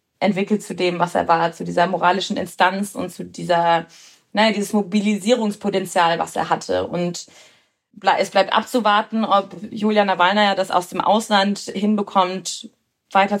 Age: 20-39